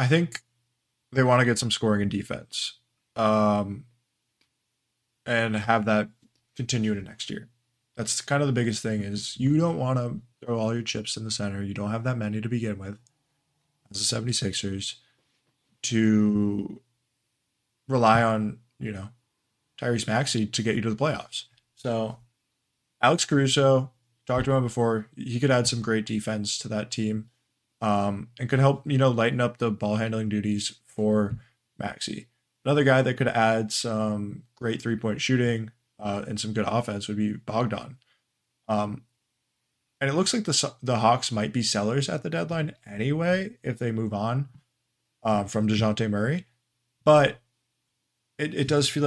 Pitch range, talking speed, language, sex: 110-130 Hz, 165 wpm, English, male